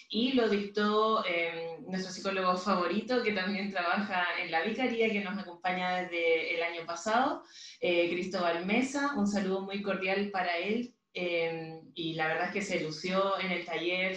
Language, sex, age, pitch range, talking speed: Spanish, female, 20-39, 175-210 Hz, 170 wpm